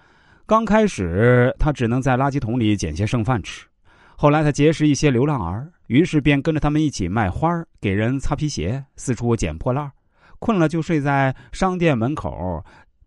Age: 30-49